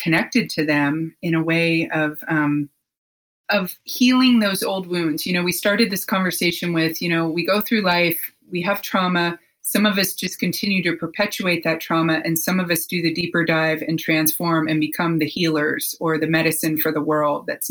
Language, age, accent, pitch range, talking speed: English, 30-49, American, 160-190 Hz, 200 wpm